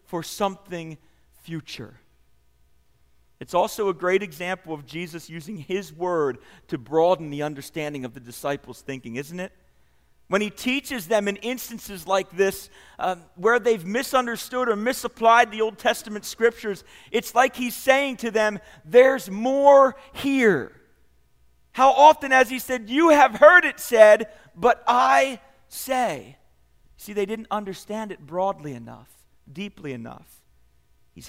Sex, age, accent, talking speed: male, 40-59, American, 140 wpm